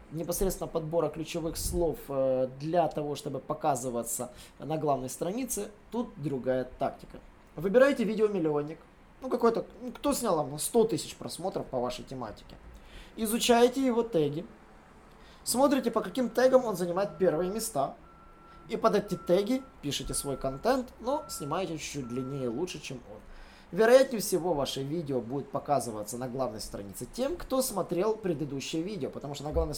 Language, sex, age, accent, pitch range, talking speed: Russian, male, 20-39, native, 135-195 Hz, 140 wpm